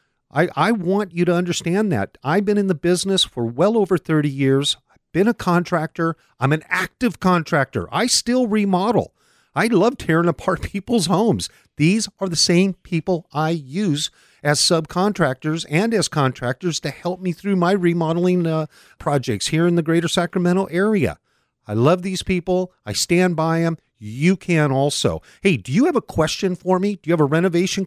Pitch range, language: 140-185 Hz, English